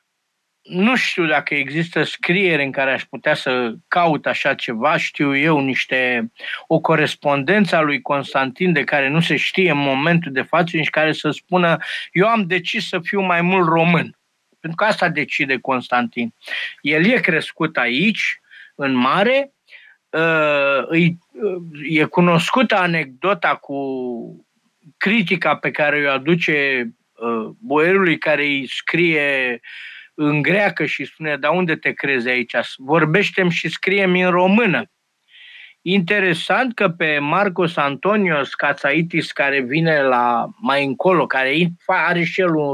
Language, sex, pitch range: Romanian, male, 140-180 Hz